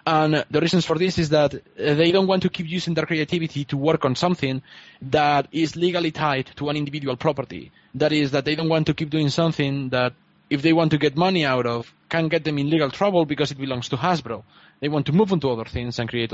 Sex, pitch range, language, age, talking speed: male, 140-175 Hz, English, 20-39, 245 wpm